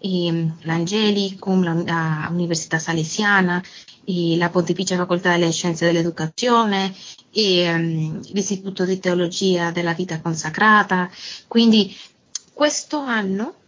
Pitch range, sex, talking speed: 175-215 Hz, female, 100 wpm